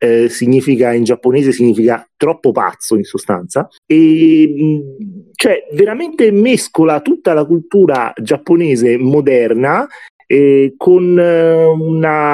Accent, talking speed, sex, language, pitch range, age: native, 100 wpm, male, Italian, 140-185 Hz, 30-49